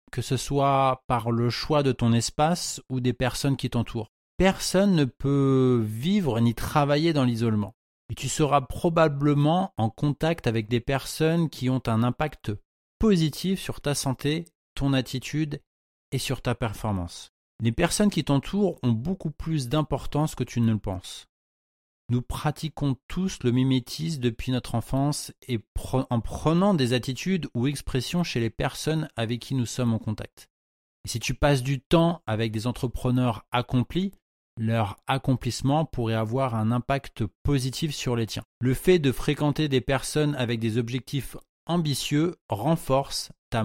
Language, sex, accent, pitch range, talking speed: French, male, French, 120-150 Hz, 160 wpm